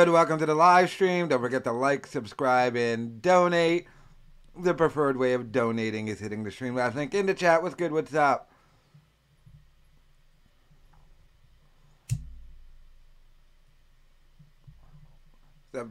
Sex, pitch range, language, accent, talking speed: male, 125-165 Hz, English, American, 120 wpm